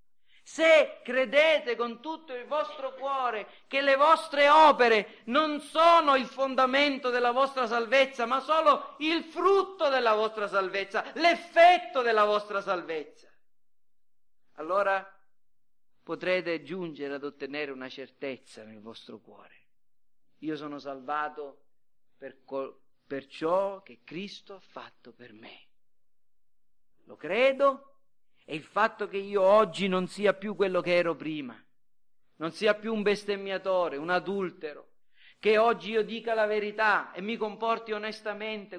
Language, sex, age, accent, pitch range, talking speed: Italian, male, 50-69, native, 195-265 Hz, 130 wpm